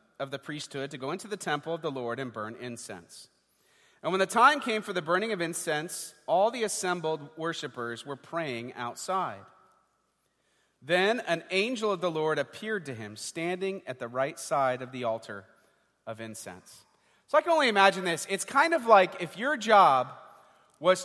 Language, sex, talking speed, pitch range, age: English, male, 180 wpm, 150-205 Hz, 40-59